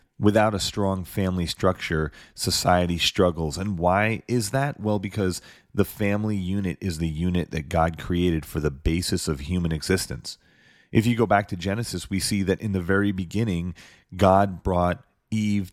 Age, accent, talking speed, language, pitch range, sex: 30-49, American, 170 wpm, English, 85-110 Hz, male